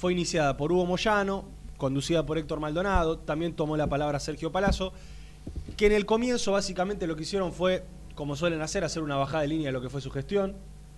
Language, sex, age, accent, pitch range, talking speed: Spanish, male, 20-39, Argentinian, 135-180 Hz, 210 wpm